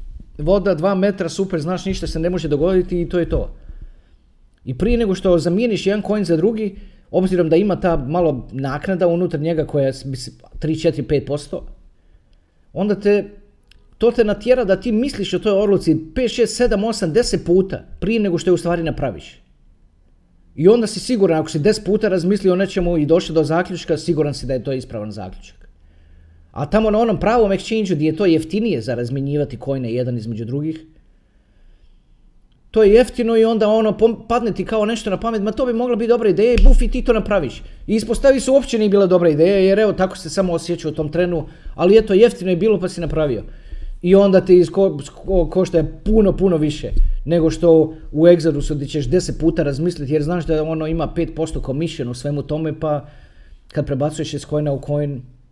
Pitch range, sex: 145-200 Hz, male